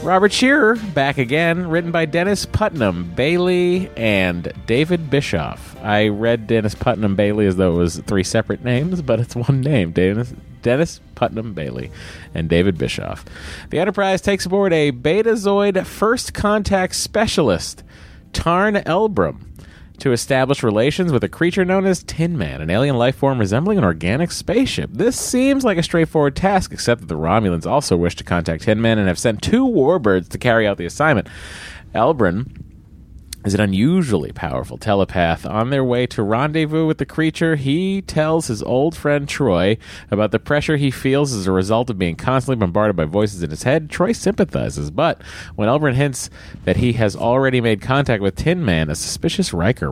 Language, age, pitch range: English, 30-49, 95-155 Hz